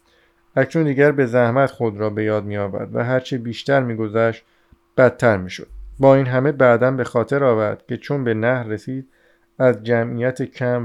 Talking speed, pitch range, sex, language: 170 wpm, 115-135 Hz, male, Persian